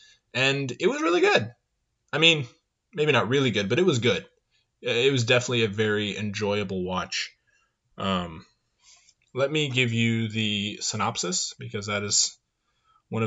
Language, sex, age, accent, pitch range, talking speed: English, male, 20-39, American, 105-130 Hz, 150 wpm